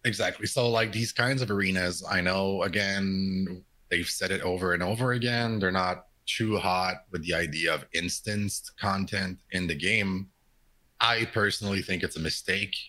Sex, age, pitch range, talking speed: male, 30-49, 90-115 Hz, 170 wpm